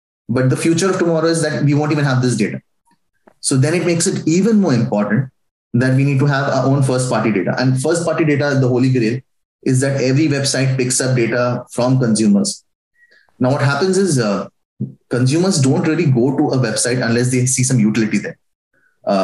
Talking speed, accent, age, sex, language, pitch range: 195 wpm, Indian, 20-39, male, English, 120-140 Hz